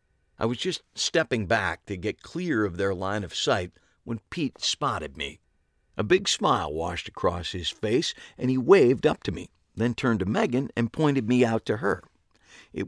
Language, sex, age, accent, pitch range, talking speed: English, male, 50-69, American, 90-125 Hz, 190 wpm